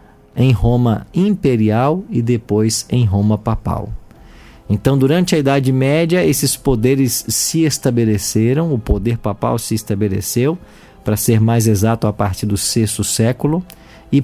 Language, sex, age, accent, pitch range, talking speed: Portuguese, male, 50-69, Brazilian, 105-145 Hz, 135 wpm